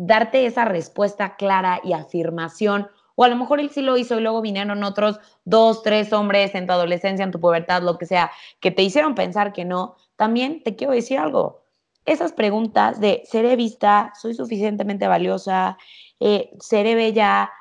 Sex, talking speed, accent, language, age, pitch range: female, 175 wpm, Mexican, Spanish, 20-39, 185-225 Hz